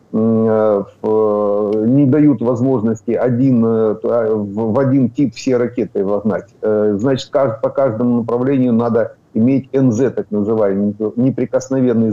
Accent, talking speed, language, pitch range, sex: native, 100 wpm, Ukrainian, 110-130 Hz, male